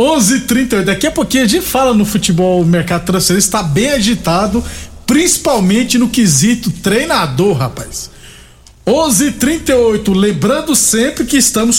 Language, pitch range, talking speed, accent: Portuguese, 180-235 Hz, 135 wpm, Brazilian